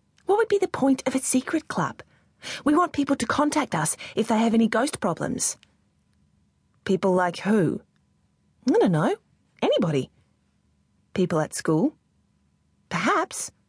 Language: English